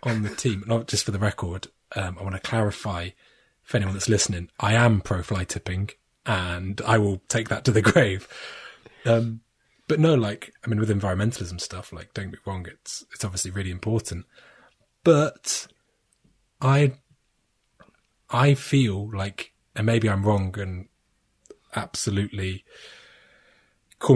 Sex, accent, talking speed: male, British, 150 wpm